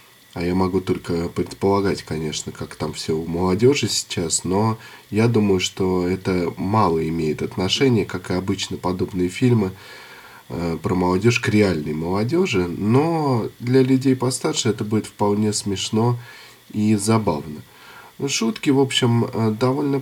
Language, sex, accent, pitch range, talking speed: Russian, male, native, 95-130 Hz, 130 wpm